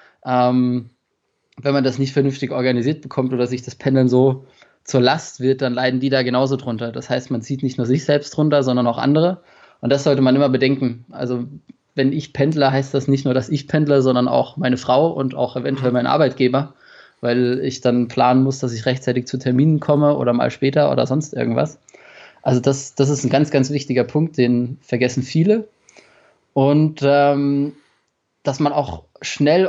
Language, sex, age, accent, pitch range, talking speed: German, male, 20-39, German, 130-145 Hz, 190 wpm